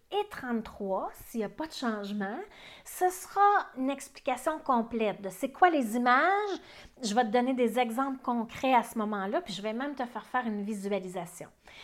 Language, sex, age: French, female, 30-49